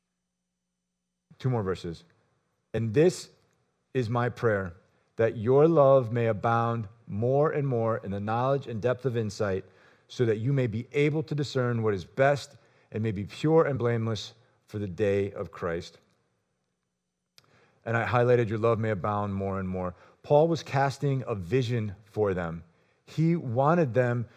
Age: 40-59